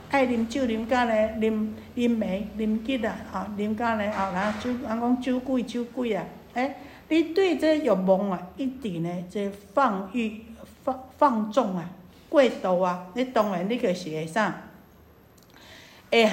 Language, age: Chinese, 60-79